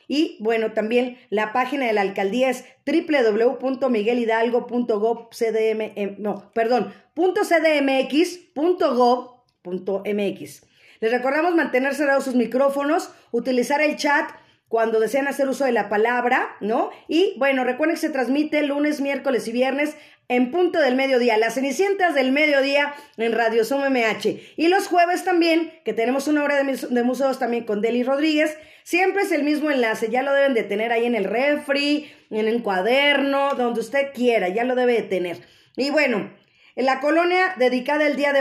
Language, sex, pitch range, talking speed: Spanish, female, 230-295 Hz, 155 wpm